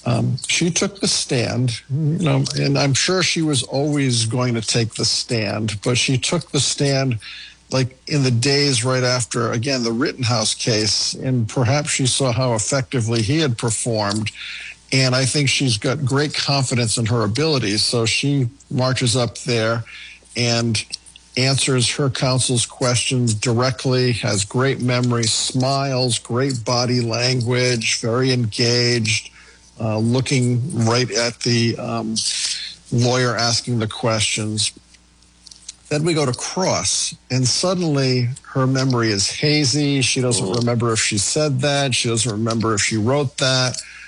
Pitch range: 115-135 Hz